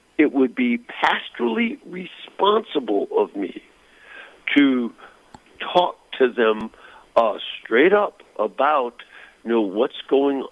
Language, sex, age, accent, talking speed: English, male, 60-79, American, 110 wpm